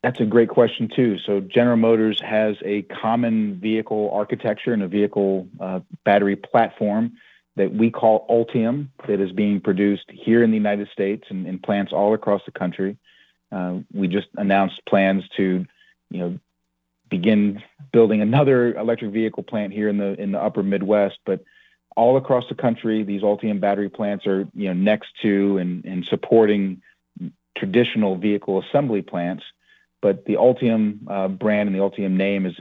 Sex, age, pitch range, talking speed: male, 40-59, 90-110 Hz, 165 wpm